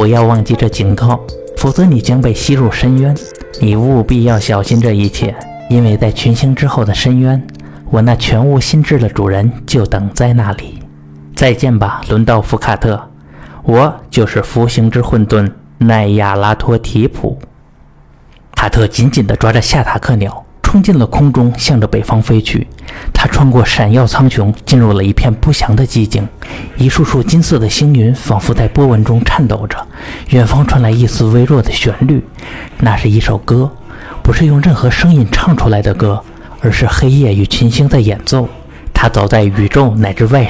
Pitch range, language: 105-130 Hz, Chinese